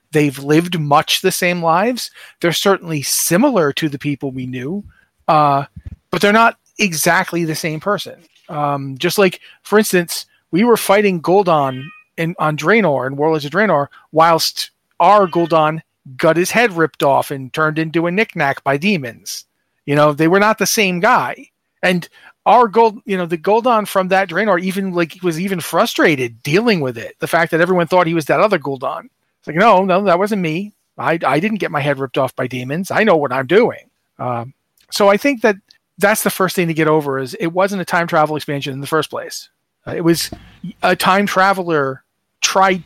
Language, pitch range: English, 155-195 Hz